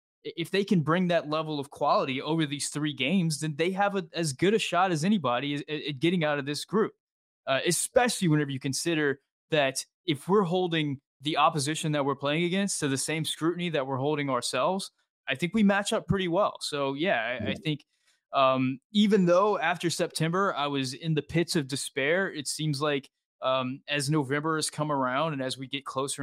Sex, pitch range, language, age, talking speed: male, 135-165 Hz, English, 20-39, 205 wpm